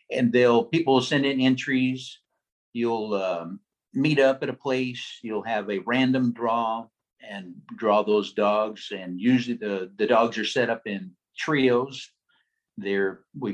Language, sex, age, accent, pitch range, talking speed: English, male, 50-69, American, 100-130 Hz, 155 wpm